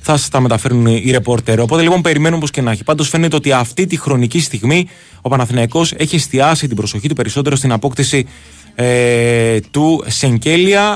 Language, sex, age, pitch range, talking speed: Greek, male, 20-39, 110-145 Hz, 180 wpm